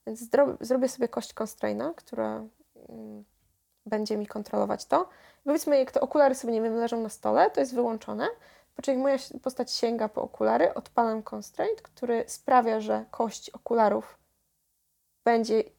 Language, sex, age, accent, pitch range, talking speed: Polish, female, 20-39, native, 210-265 Hz, 140 wpm